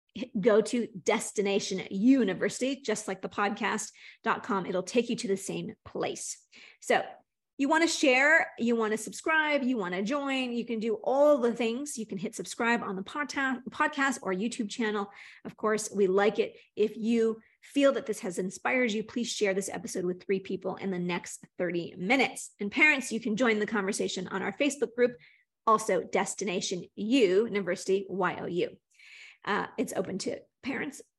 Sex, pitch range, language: female, 200-260 Hz, English